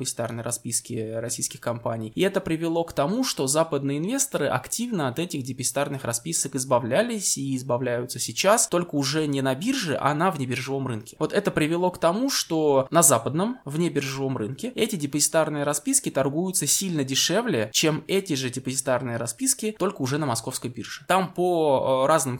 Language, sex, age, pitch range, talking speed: Russian, male, 20-39, 130-165 Hz, 165 wpm